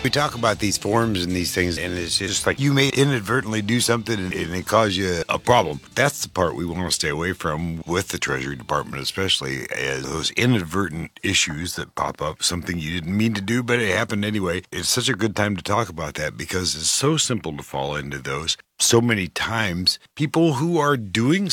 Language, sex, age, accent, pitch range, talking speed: English, male, 50-69, American, 85-115 Hz, 220 wpm